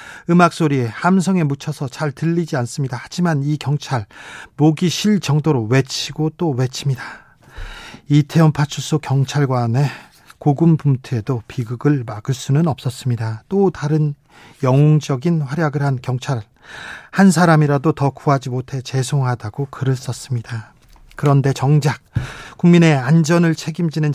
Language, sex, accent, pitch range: Korean, male, native, 135-160 Hz